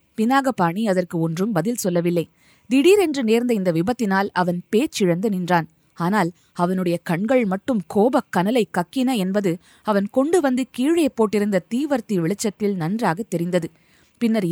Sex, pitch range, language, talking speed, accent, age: female, 180-245 Hz, Tamil, 125 wpm, native, 20-39